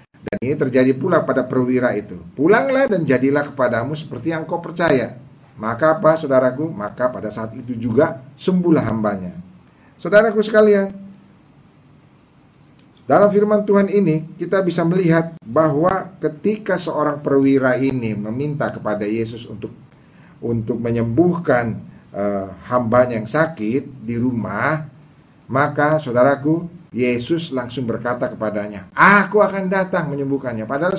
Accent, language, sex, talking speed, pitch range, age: Indonesian, English, male, 120 wpm, 125-180 Hz, 50-69